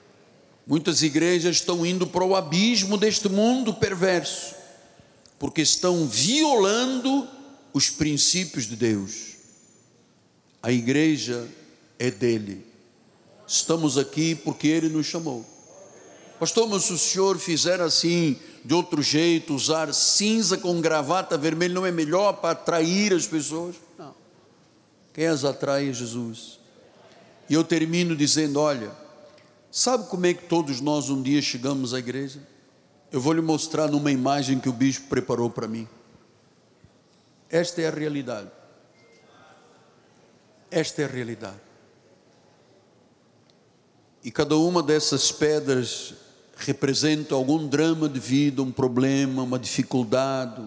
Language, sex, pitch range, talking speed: Portuguese, male, 135-170 Hz, 125 wpm